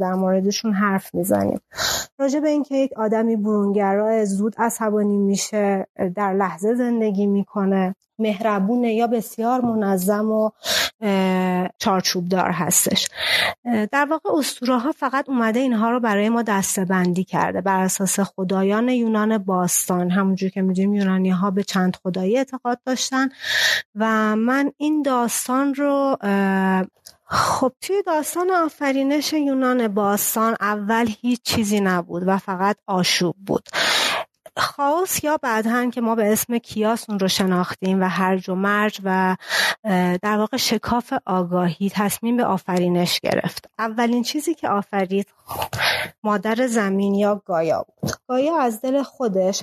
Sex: female